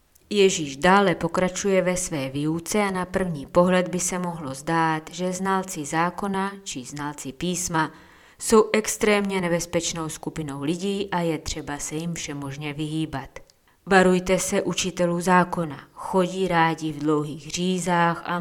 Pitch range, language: 155-190 Hz, Czech